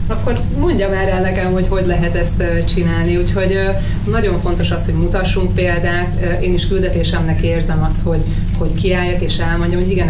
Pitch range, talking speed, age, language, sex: 85-95 Hz, 165 wpm, 30-49, Hungarian, female